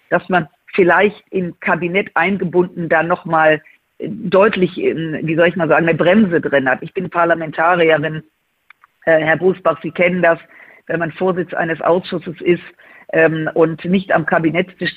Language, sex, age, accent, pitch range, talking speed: German, female, 50-69, German, 160-190 Hz, 145 wpm